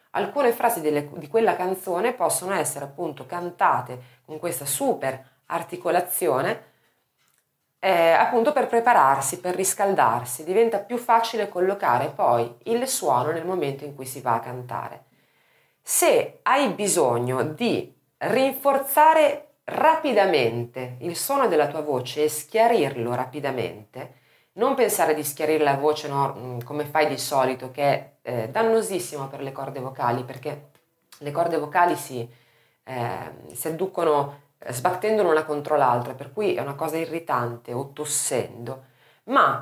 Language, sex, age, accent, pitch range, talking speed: Italian, female, 30-49, native, 135-195 Hz, 130 wpm